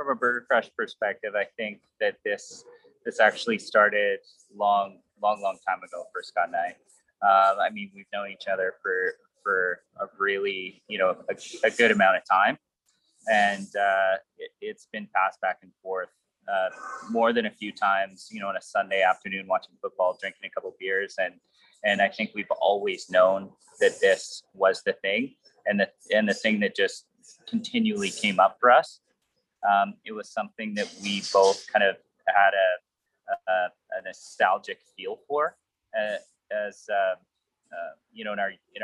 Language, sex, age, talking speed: English, male, 30-49, 180 wpm